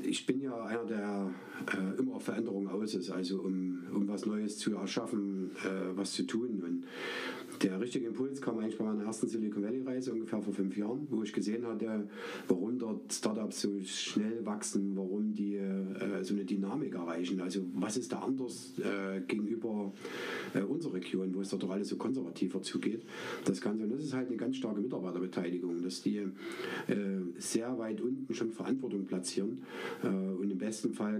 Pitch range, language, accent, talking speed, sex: 95-110 Hz, German, German, 175 wpm, male